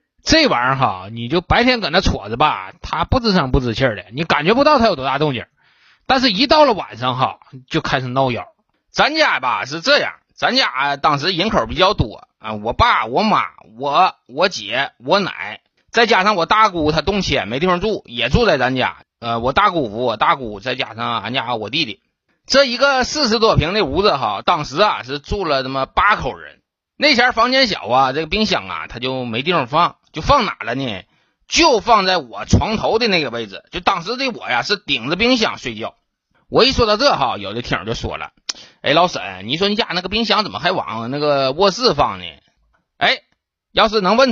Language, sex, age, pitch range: Chinese, male, 20-39, 130-220 Hz